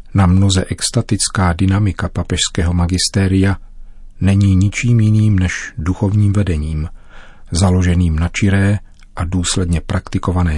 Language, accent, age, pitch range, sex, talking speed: Czech, native, 40-59, 90-105 Hz, male, 100 wpm